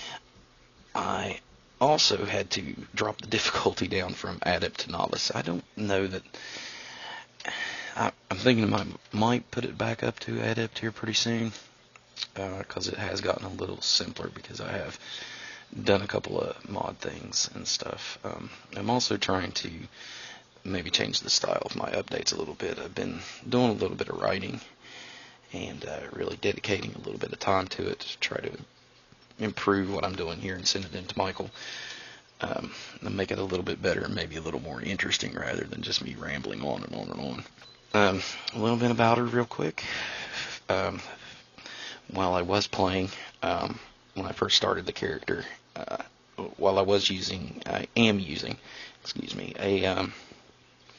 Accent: American